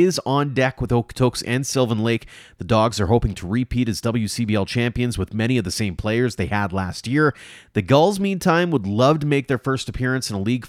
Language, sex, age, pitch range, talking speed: English, male, 30-49, 105-135 Hz, 225 wpm